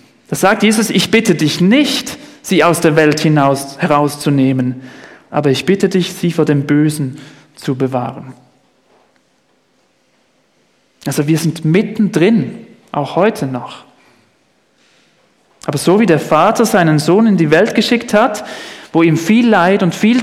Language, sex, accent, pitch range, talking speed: German, male, German, 150-205 Hz, 140 wpm